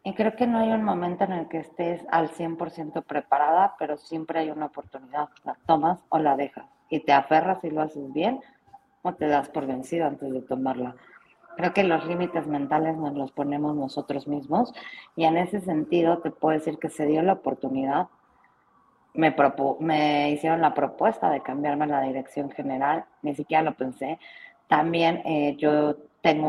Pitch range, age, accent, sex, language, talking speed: 150-220 Hz, 30-49, Mexican, female, Spanish, 180 wpm